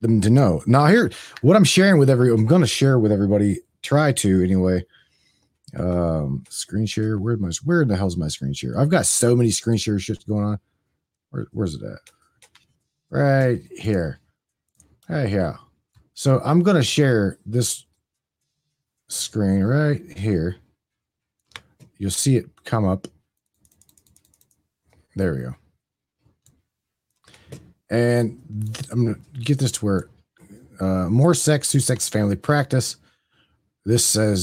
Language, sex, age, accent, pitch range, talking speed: English, male, 40-59, American, 95-130 Hz, 140 wpm